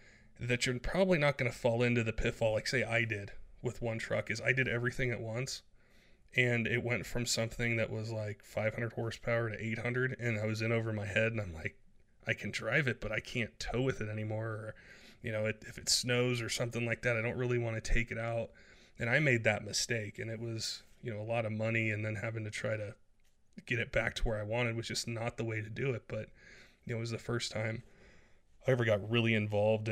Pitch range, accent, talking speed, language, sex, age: 110-120 Hz, American, 240 wpm, English, male, 20-39